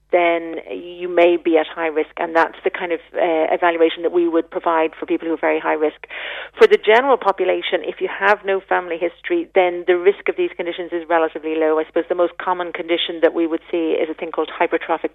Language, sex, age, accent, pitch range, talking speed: English, female, 40-59, British, 160-180 Hz, 235 wpm